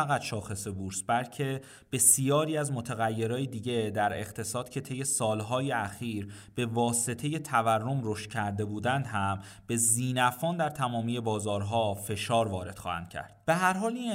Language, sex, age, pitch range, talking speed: Persian, male, 30-49, 110-140 Hz, 145 wpm